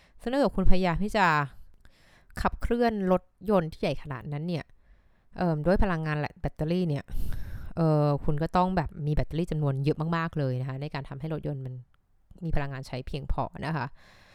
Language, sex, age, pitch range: Thai, female, 20-39, 145-180 Hz